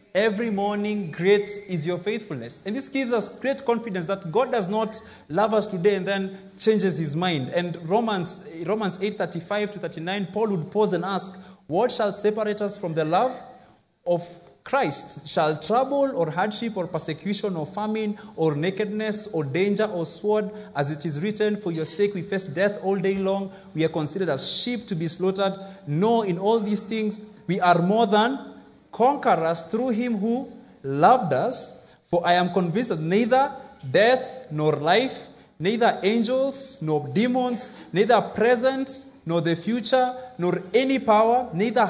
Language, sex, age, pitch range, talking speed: English, male, 30-49, 170-220 Hz, 170 wpm